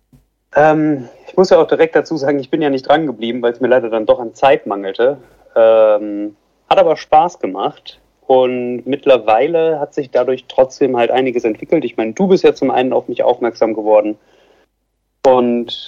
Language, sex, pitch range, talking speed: German, male, 115-150 Hz, 180 wpm